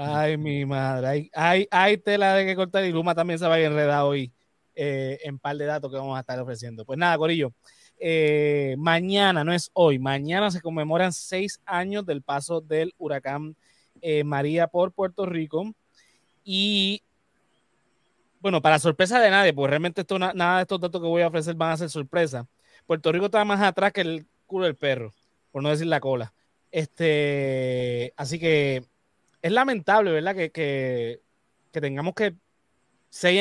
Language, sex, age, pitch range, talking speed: Spanish, male, 20-39, 145-185 Hz, 180 wpm